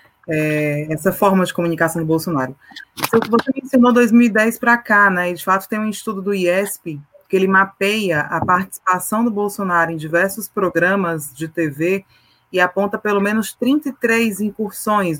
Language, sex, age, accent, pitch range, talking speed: Portuguese, female, 20-39, Brazilian, 175-215 Hz, 155 wpm